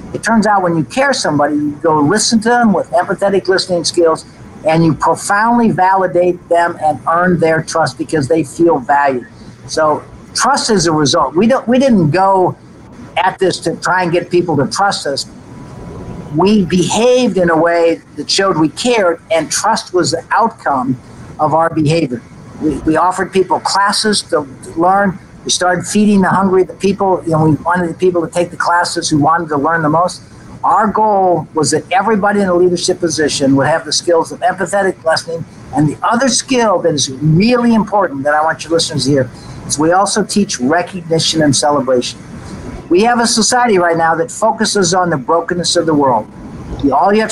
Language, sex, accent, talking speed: English, male, American, 190 wpm